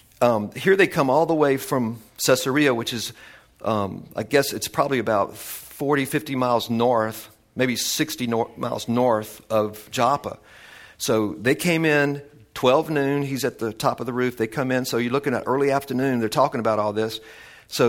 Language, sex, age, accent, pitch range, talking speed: English, male, 50-69, American, 115-140 Hz, 190 wpm